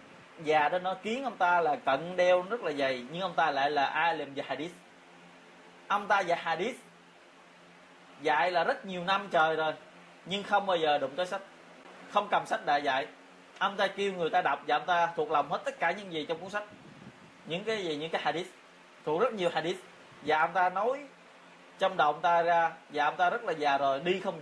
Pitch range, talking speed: 140-180 Hz, 220 wpm